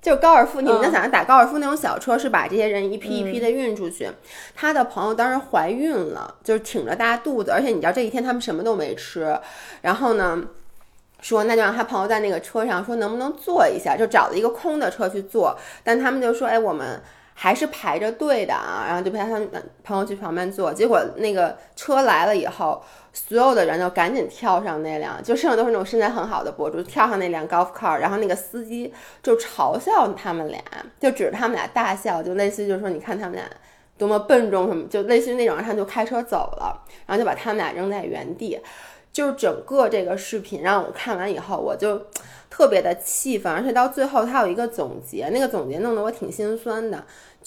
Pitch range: 200-255 Hz